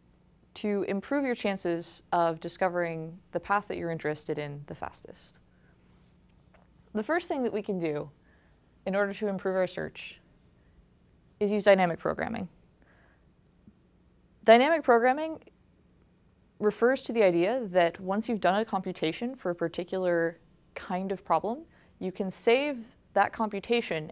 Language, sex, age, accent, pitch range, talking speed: English, female, 20-39, American, 170-220 Hz, 135 wpm